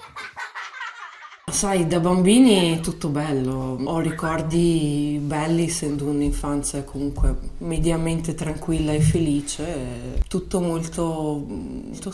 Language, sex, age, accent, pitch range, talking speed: Italian, female, 20-39, native, 140-165 Hz, 95 wpm